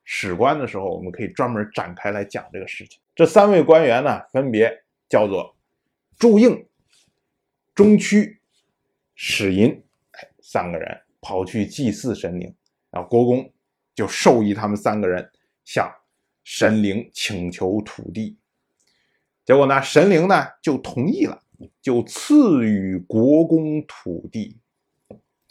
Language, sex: Chinese, male